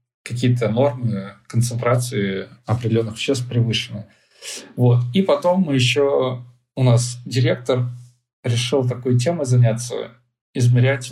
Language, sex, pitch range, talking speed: Russian, male, 115-130 Hz, 105 wpm